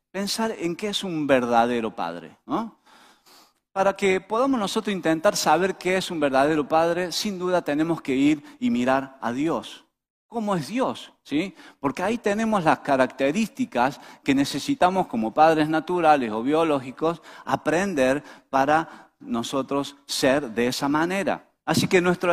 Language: Spanish